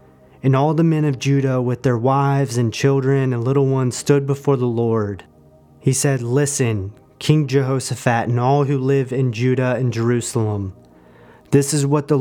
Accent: American